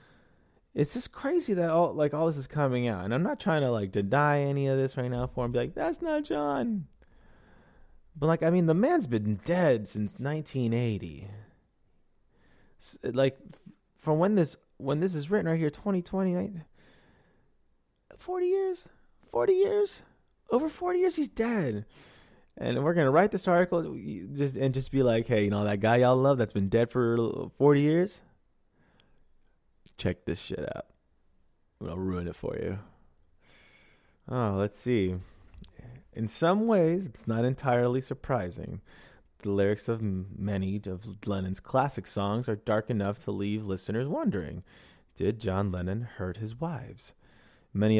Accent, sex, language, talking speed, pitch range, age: American, male, English, 160 wpm, 100-155 Hz, 20-39